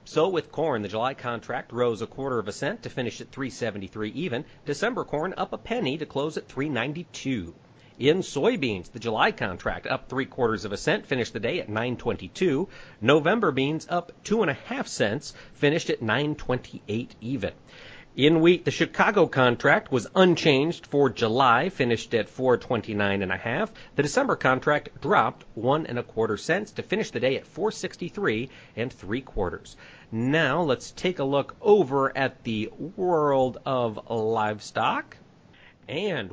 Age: 40-59